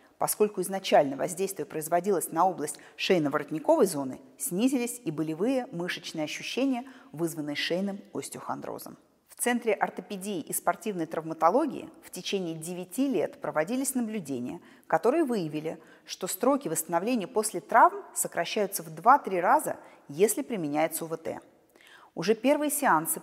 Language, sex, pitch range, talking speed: Russian, female, 160-245 Hz, 115 wpm